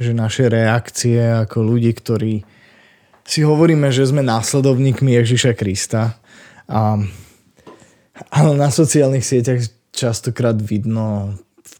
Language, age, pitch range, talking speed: Slovak, 20-39, 110-130 Hz, 105 wpm